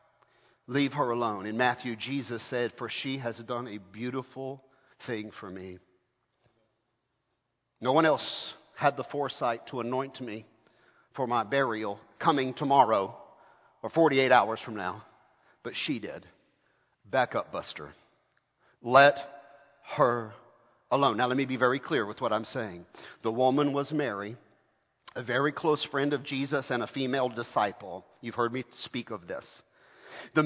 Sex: male